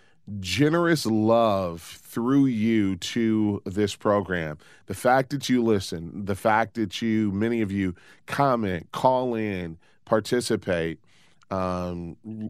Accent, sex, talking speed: American, male, 115 wpm